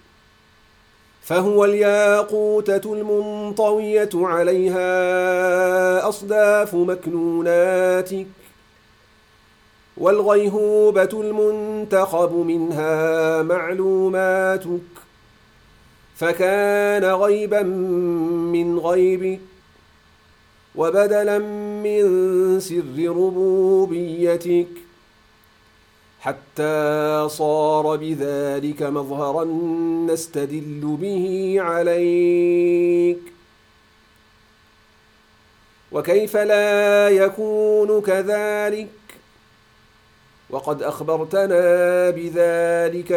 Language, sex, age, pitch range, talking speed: English, male, 40-59, 160-195 Hz, 45 wpm